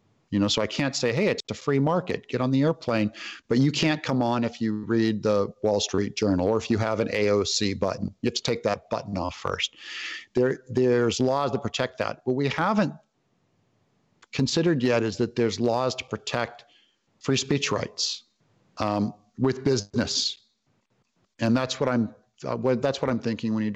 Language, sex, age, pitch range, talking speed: English, male, 50-69, 110-135 Hz, 195 wpm